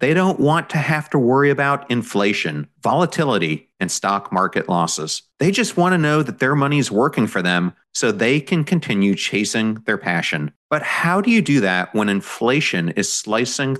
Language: English